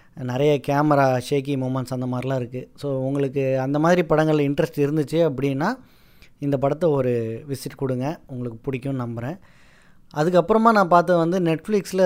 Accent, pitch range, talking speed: native, 130-160 Hz, 140 wpm